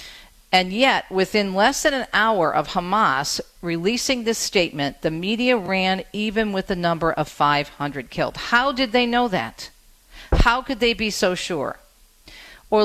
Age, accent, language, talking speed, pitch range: 50-69, American, English, 160 wpm, 160-220 Hz